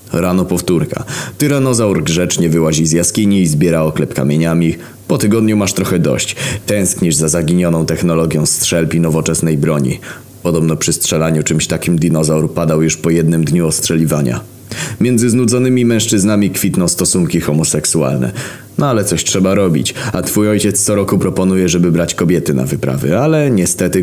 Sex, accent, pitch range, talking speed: male, native, 80-110 Hz, 150 wpm